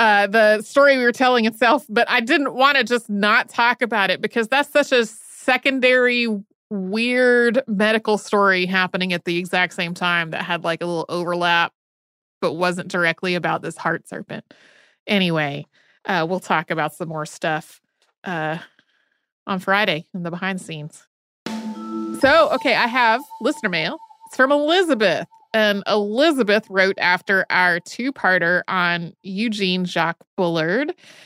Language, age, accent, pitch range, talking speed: English, 30-49, American, 180-245 Hz, 150 wpm